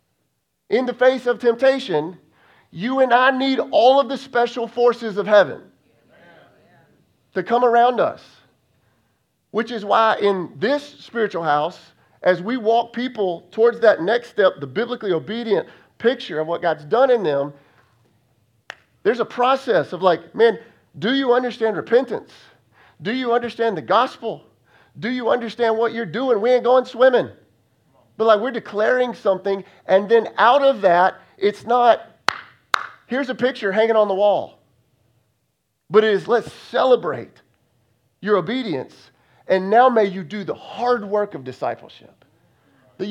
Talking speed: 150 wpm